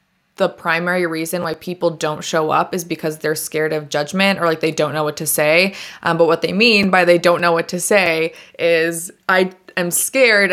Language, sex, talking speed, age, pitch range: English, female, 215 wpm, 20-39, 165-190 Hz